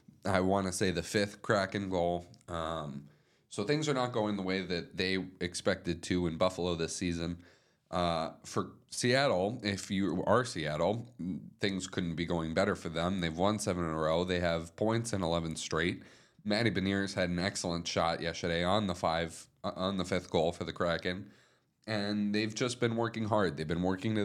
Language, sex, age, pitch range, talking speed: English, male, 30-49, 90-105 Hz, 190 wpm